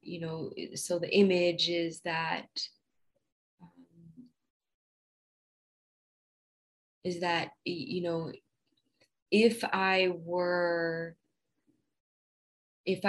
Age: 20-39